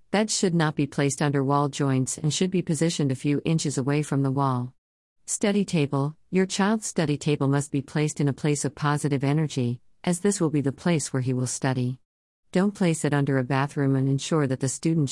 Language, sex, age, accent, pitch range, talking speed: English, female, 50-69, American, 130-165 Hz, 220 wpm